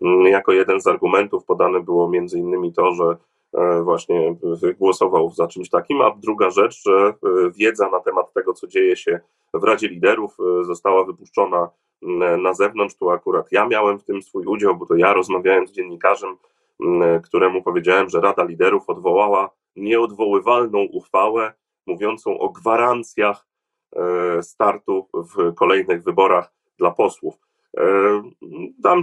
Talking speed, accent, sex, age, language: 135 wpm, native, male, 30-49, Polish